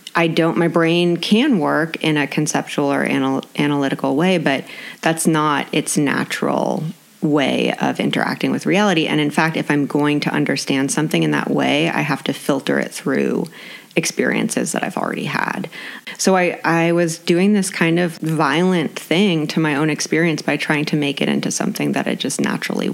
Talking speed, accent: 185 wpm, American